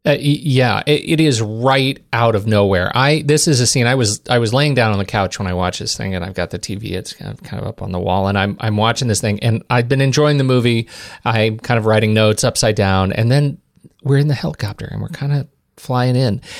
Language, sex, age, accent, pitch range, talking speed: English, male, 30-49, American, 110-145 Hz, 265 wpm